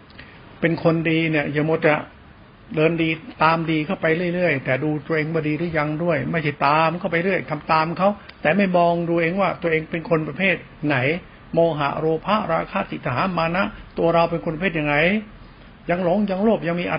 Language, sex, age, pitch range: Thai, male, 70-89, 160-195 Hz